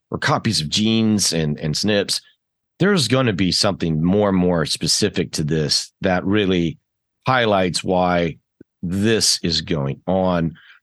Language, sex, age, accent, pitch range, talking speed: English, male, 40-59, American, 75-95 Hz, 140 wpm